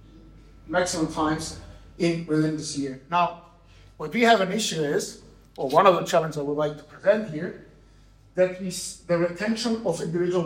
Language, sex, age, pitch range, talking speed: English, male, 50-69, 155-195 Hz, 170 wpm